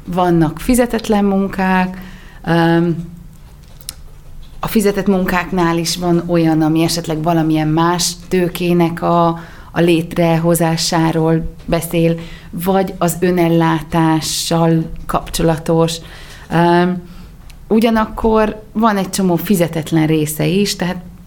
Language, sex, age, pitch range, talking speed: Hungarian, female, 30-49, 155-190 Hz, 85 wpm